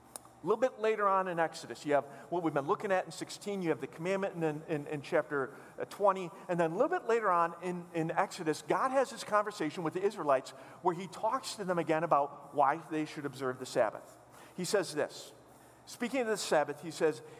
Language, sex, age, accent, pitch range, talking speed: English, male, 40-59, American, 155-215 Hz, 215 wpm